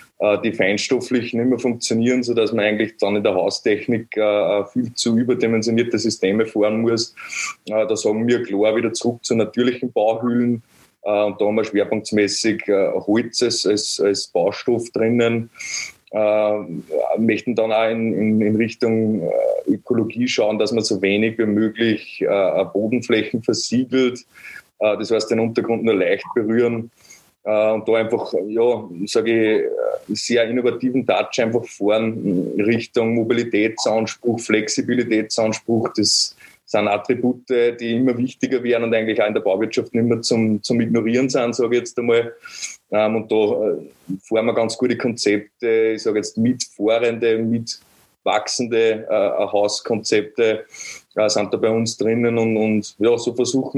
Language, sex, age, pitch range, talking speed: German, male, 20-39, 110-120 Hz, 130 wpm